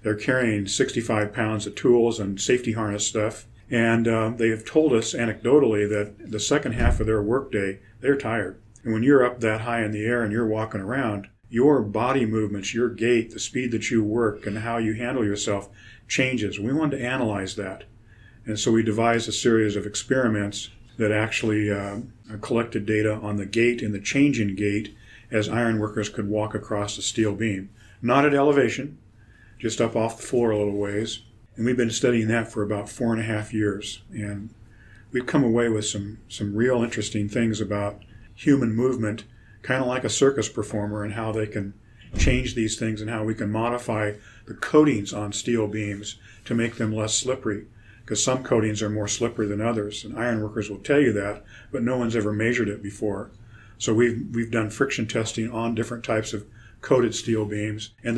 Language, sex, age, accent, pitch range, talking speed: English, male, 40-59, American, 105-115 Hz, 195 wpm